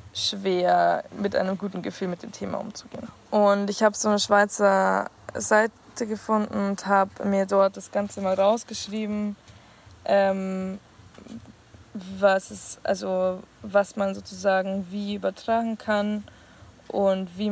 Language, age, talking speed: German, 20-39, 125 wpm